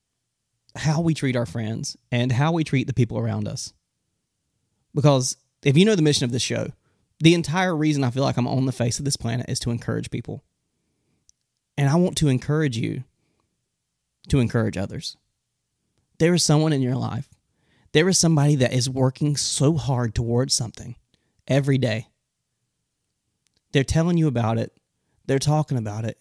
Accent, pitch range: American, 120-145 Hz